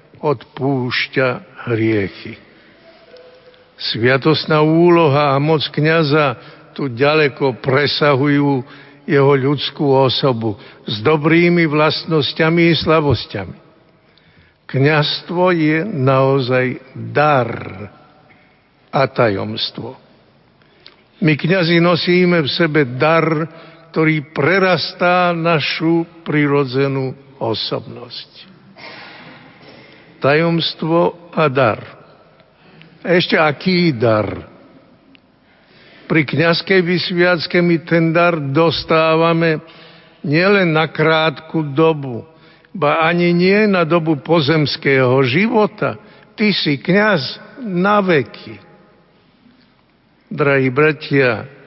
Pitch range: 135-170 Hz